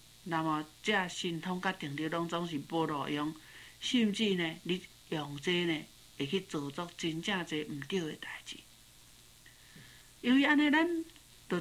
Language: Chinese